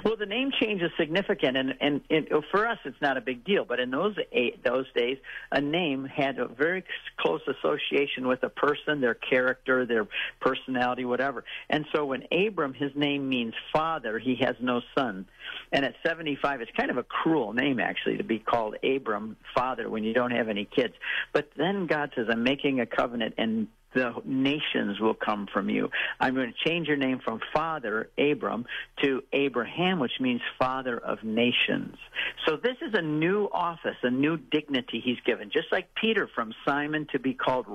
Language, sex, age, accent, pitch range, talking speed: English, male, 50-69, American, 125-155 Hz, 190 wpm